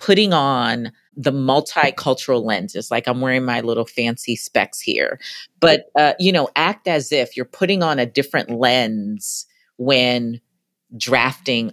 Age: 40-59